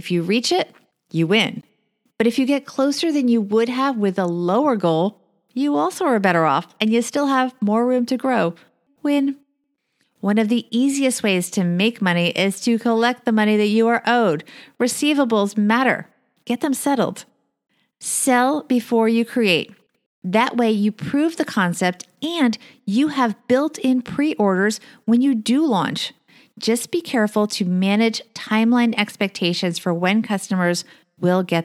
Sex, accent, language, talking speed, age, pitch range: female, American, English, 165 wpm, 40-59, 190-255 Hz